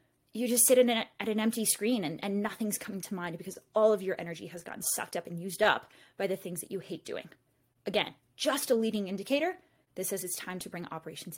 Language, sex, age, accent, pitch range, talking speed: English, female, 20-39, American, 180-230 Hz, 245 wpm